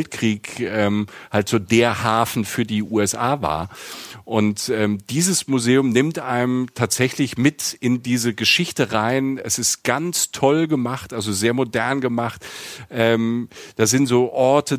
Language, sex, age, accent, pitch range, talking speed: German, male, 40-59, German, 110-130 Hz, 140 wpm